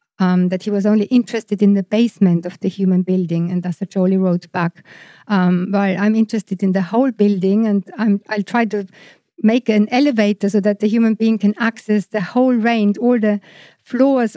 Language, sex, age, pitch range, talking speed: English, female, 50-69, 195-230 Hz, 200 wpm